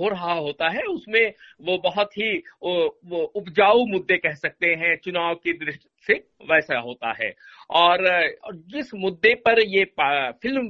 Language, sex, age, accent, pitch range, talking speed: Hindi, male, 60-79, native, 175-235 Hz, 145 wpm